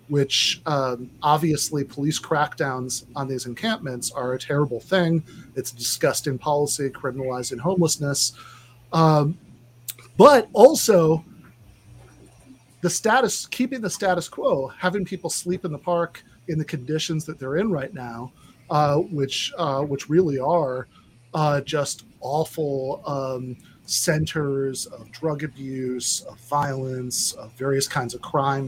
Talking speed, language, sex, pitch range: 130 wpm, English, male, 130-175 Hz